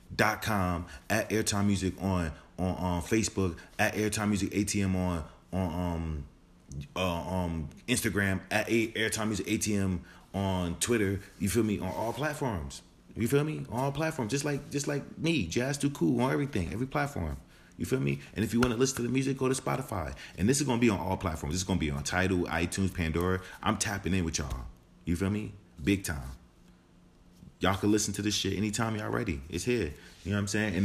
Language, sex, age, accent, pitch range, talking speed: English, male, 30-49, American, 90-125 Hz, 210 wpm